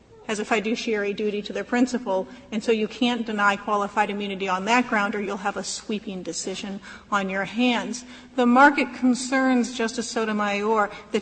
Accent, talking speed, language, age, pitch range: American, 170 wpm, English, 40-59, 215-255 Hz